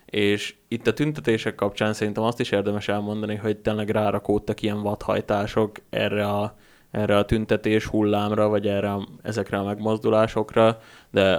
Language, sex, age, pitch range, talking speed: Hungarian, male, 20-39, 100-110 Hz, 150 wpm